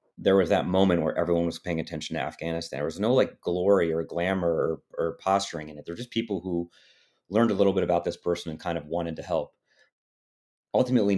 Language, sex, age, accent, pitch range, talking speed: English, male, 30-49, American, 85-105 Hz, 220 wpm